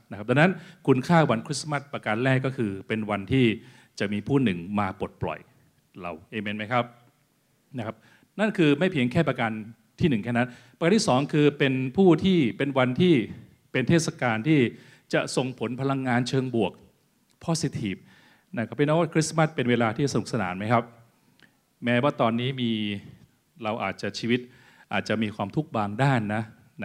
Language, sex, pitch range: Thai, male, 110-145 Hz